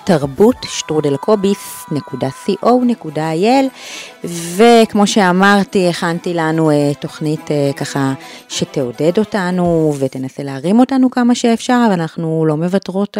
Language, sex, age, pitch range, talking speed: Hebrew, female, 30-49, 145-205 Hz, 80 wpm